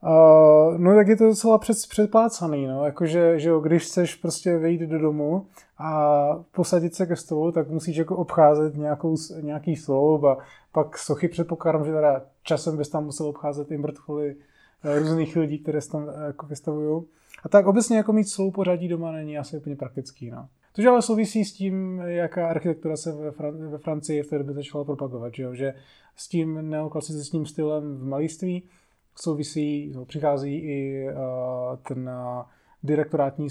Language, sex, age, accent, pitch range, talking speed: Czech, male, 20-39, native, 150-180 Hz, 170 wpm